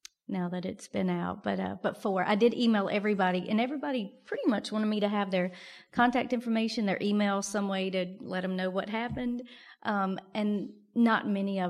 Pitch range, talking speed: 185-230 Hz, 200 wpm